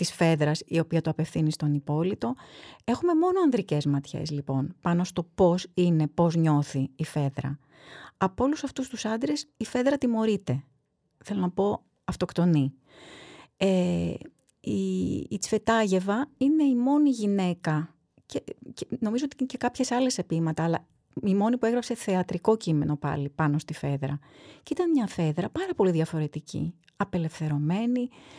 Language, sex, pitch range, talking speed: Greek, female, 155-230 Hz, 145 wpm